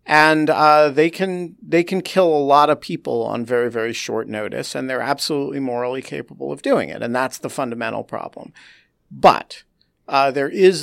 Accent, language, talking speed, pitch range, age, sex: American, English, 185 wpm, 120-160 Hz, 50-69, male